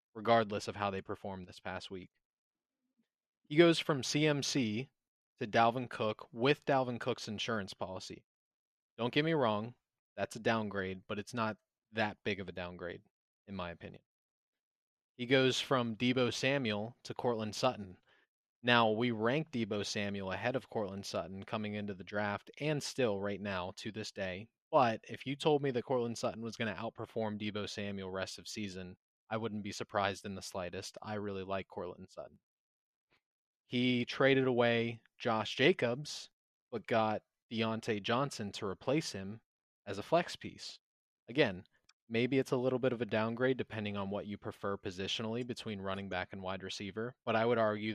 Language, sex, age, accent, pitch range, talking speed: English, male, 20-39, American, 100-120 Hz, 170 wpm